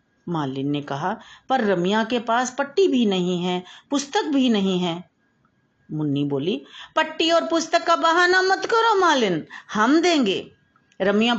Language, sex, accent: Hindi, female, native